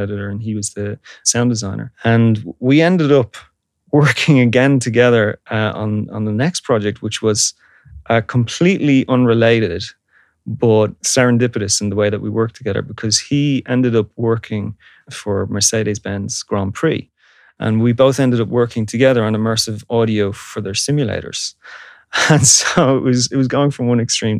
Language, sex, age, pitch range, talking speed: English, male, 30-49, 105-125 Hz, 160 wpm